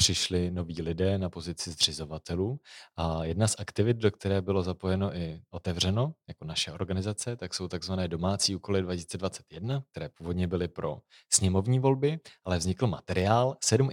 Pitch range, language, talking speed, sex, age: 85-105 Hz, Czech, 150 wpm, male, 30-49